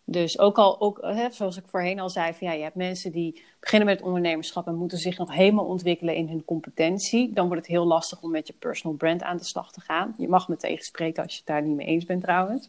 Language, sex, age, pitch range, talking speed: Dutch, female, 30-49, 170-200 Hz, 270 wpm